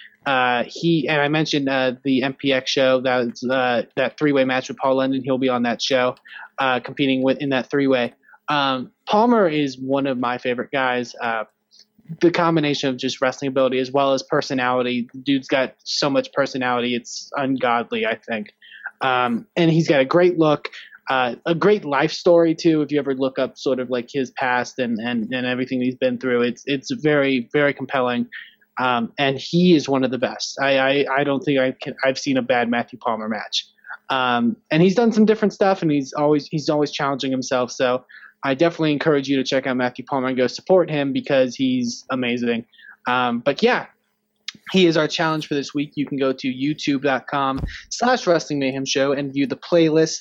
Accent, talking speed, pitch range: American, 200 wpm, 130-155 Hz